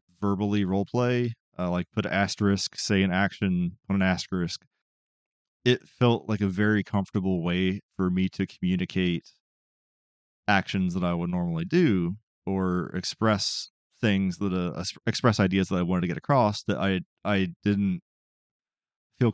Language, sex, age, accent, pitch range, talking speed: English, male, 30-49, American, 90-105 Hz, 150 wpm